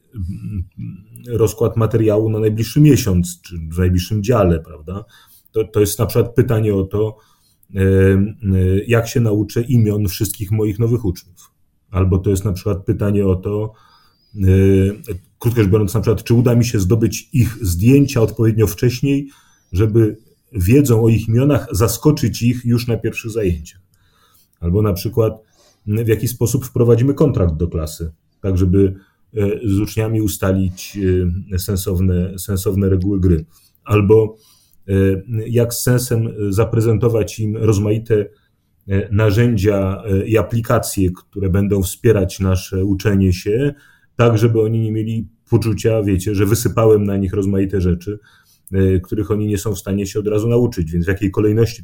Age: 30-49